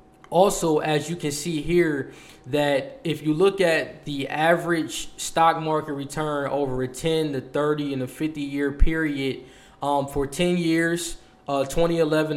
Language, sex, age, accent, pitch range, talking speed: English, male, 20-39, American, 140-155 Hz, 155 wpm